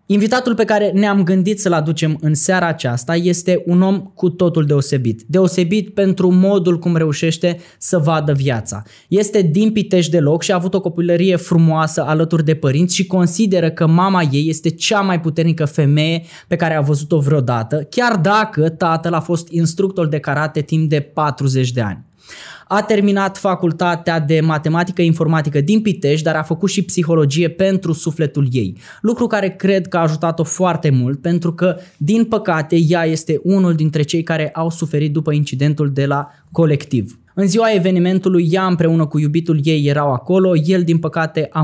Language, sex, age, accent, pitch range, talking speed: Romanian, male, 20-39, native, 150-180 Hz, 175 wpm